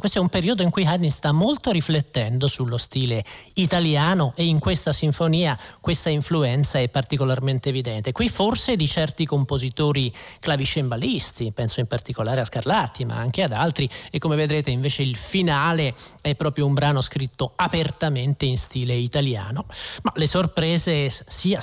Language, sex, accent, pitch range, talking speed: Italian, male, native, 130-175 Hz, 155 wpm